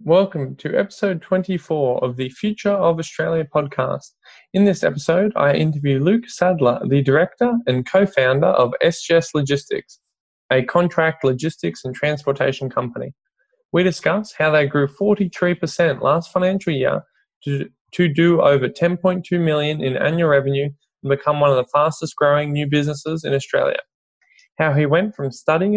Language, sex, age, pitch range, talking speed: English, male, 10-29, 140-175 Hz, 150 wpm